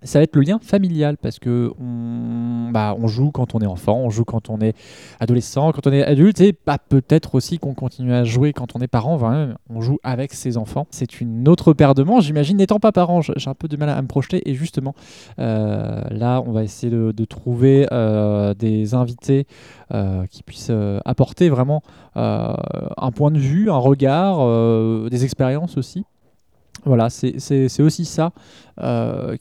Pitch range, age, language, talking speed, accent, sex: 120-150 Hz, 20-39, French, 200 wpm, French, male